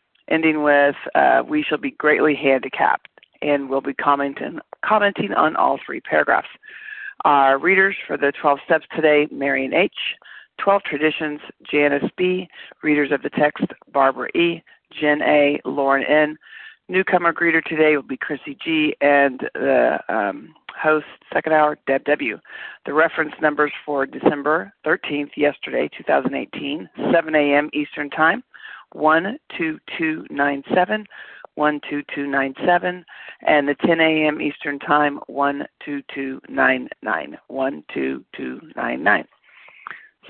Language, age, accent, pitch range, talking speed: English, 50-69, American, 145-180 Hz, 120 wpm